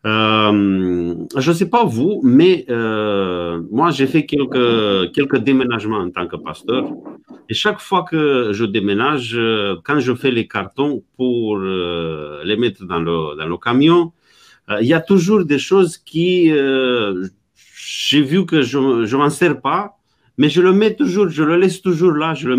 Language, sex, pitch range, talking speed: French, male, 115-155 Hz, 175 wpm